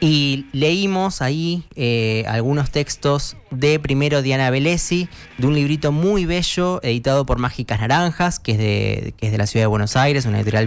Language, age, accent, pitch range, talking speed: Spanish, 20-39, Argentinian, 110-145 Hz, 180 wpm